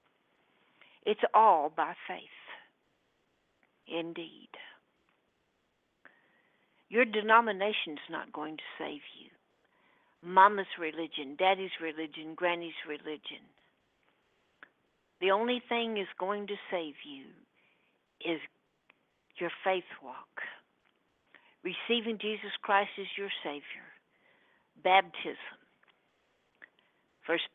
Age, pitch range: 60-79, 165-210 Hz